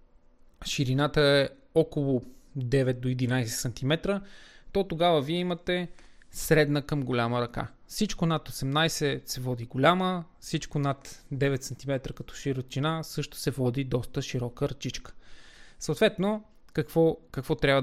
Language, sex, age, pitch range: Bulgarian, male, 20-39, 130-165 Hz